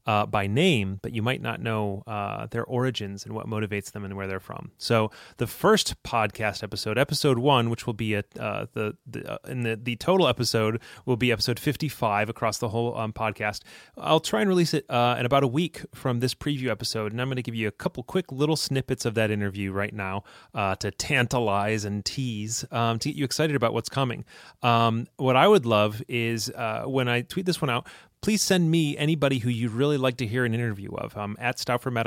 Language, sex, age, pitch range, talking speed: English, male, 30-49, 110-145 Hz, 220 wpm